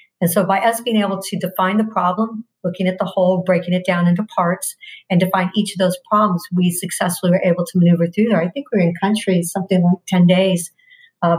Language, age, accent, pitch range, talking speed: English, 50-69, American, 175-205 Hz, 230 wpm